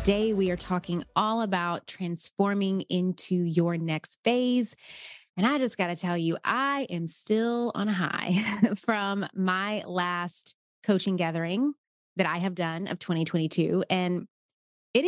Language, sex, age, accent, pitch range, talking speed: English, female, 20-39, American, 170-200 Hz, 145 wpm